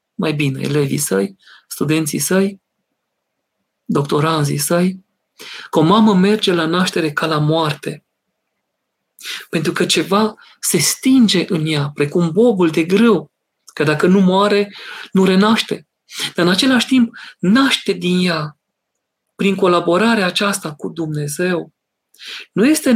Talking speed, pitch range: 125 wpm, 150-195 Hz